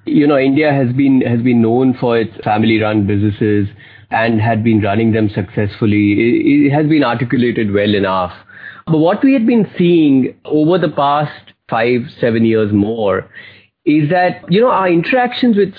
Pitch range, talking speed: 115-160 Hz, 175 wpm